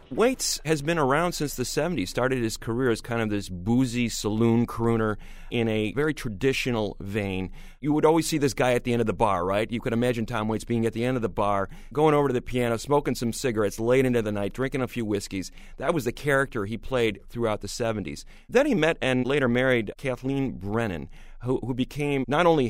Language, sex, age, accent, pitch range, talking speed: English, male, 30-49, American, 110-140 Hz, 220 wpm